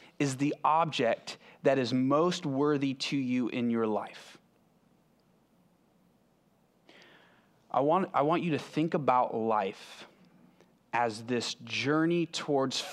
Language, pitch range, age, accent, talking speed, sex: English, 115-150 Hz, 30-49, American, 110 wpm, male